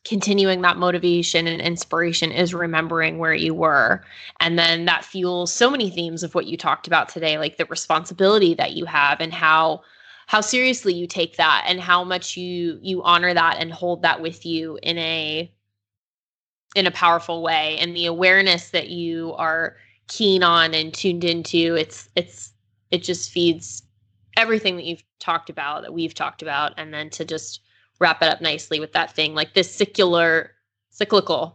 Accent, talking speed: American, 180 wpm